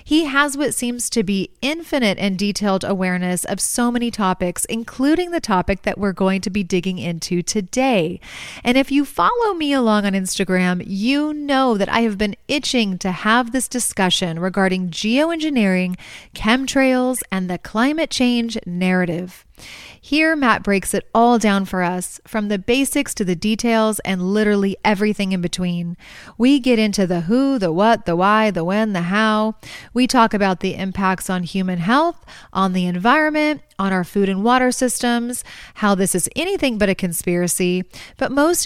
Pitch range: 190-255 Hz